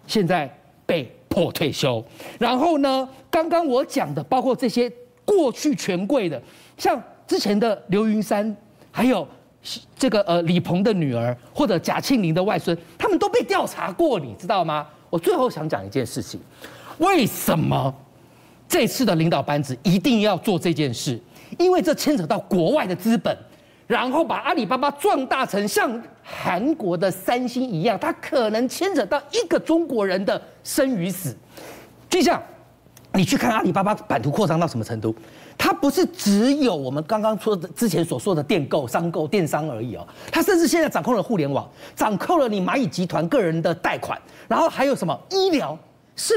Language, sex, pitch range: Chinese, male, 175-285 Hz